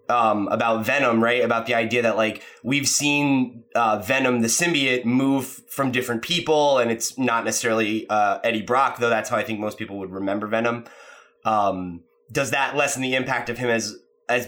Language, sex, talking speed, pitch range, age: English, male, 190 wpm, 110-145 Hz, 20-39